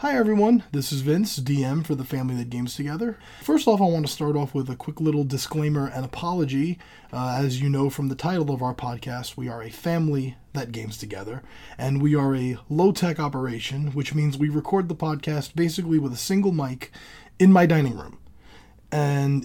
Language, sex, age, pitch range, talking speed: English, male, 20-39, 135-160 Hz, 200 wpm